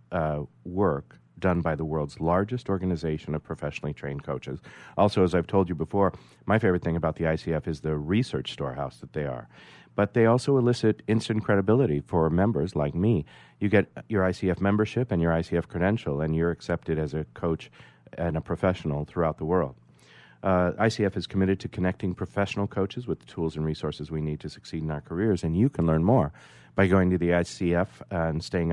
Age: 40-59